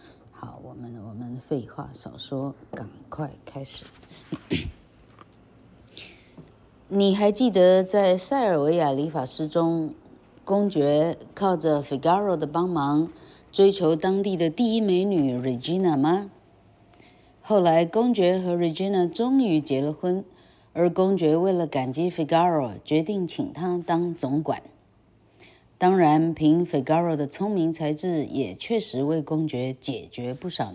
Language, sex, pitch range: Chinese, female, 140-185 Hz